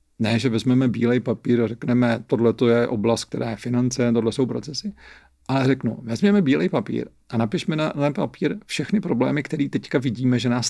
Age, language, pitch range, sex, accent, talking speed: 40-59, Czech, 115-150 Hz, male, native, 190 wpm